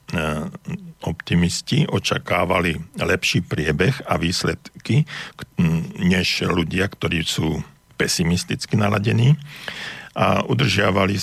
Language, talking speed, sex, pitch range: Slovak, 75 wpm, male, 85-140 Hz